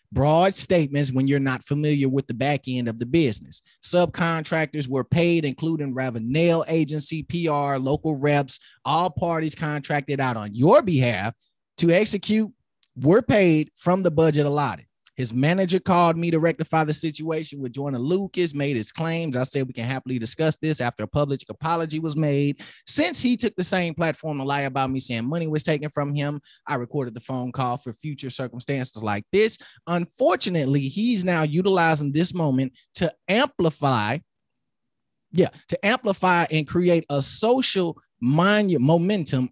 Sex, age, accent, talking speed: male, 30-49, American, 160 wpm